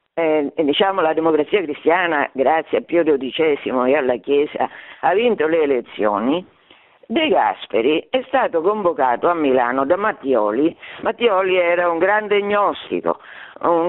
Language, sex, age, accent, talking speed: Italian, female, 50-69, native, 135 wpm